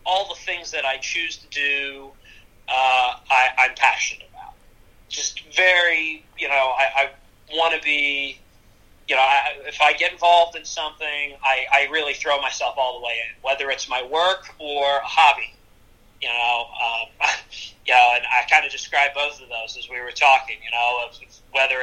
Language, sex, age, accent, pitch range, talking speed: English, male, 30-49, American, 130-165 Hz, 185 wpm